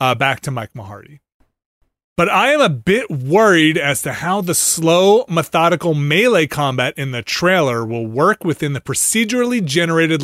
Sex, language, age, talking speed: male, English, 30-49, 165 wpm